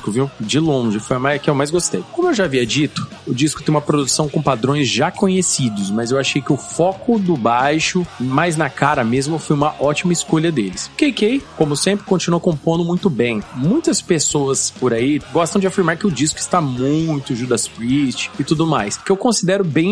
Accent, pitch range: Brazilian, 140-180 Hz